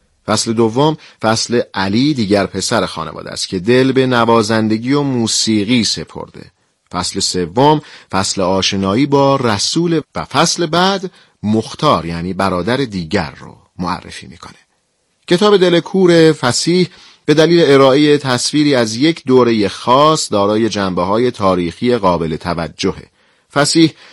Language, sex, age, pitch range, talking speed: Persian, male, 40-59, 100-140 Hz, 125 wpm